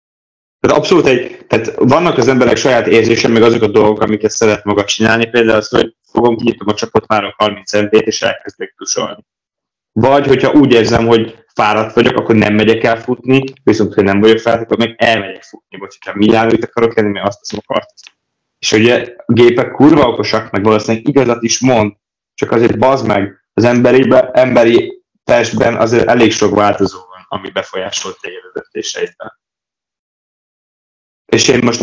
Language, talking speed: Hungarian, 170 wpm